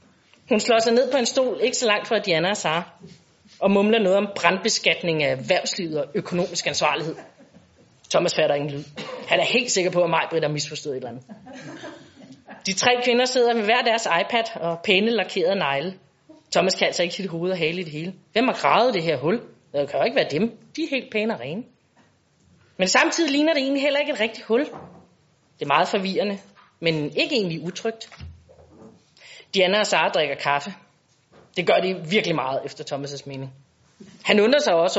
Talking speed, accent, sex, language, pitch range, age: 200 wpm, native, female, Danish, 170-235 Hz, 30-49